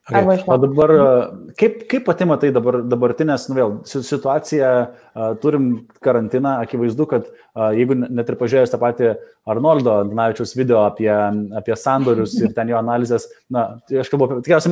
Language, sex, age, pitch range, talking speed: English, male, 20-39, 115-155 Hz, 135 wpm